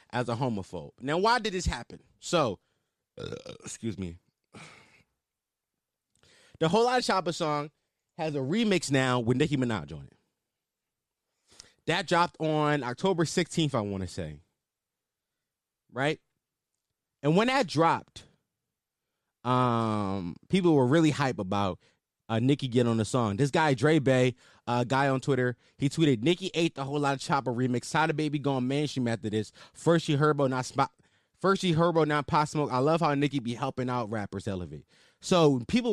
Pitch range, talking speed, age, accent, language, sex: 120-160 Hz, 170 wpm, 20-39, American, English, male